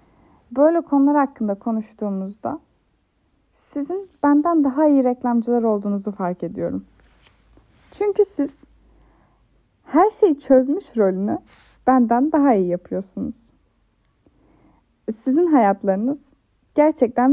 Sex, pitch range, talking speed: female, 210-305 Hz, 85 wpm